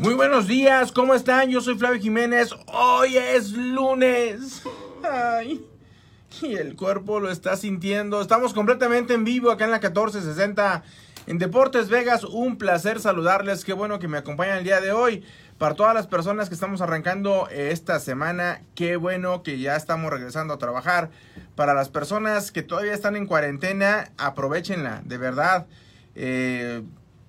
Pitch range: 135-200 Hz